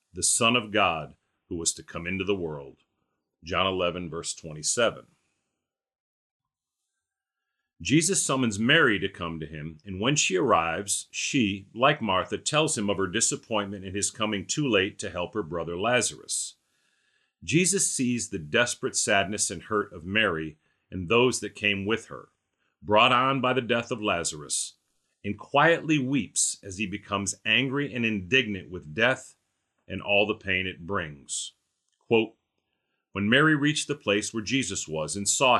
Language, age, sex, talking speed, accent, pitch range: English, 40-59, male, 155 wpm, American, 90-125 Hz